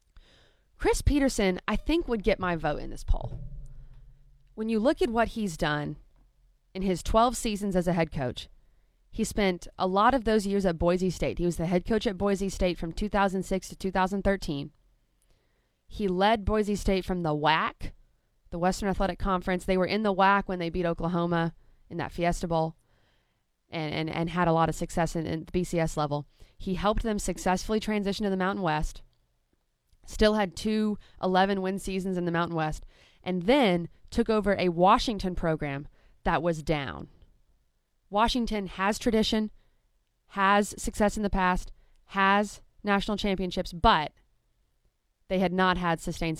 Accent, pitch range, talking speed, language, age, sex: American, 165-205 Hz, 170 wpm, English, 20-39, female